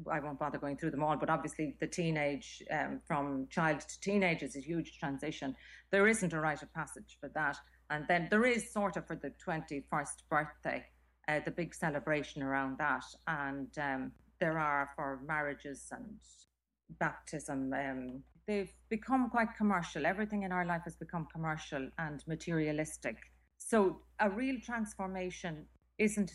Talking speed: 160 wpm